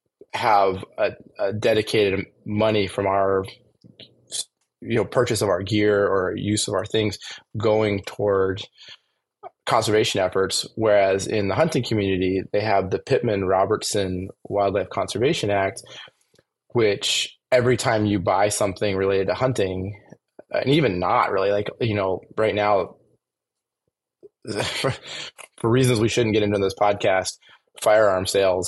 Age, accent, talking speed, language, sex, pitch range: 20-39, American, 135 wpm, English, male, 95-110 Hz